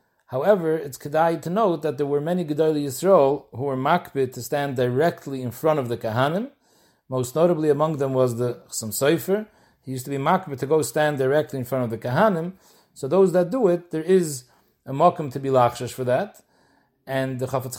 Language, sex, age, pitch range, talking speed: English, male, 40-59, 135-170 Hz, 200 wpm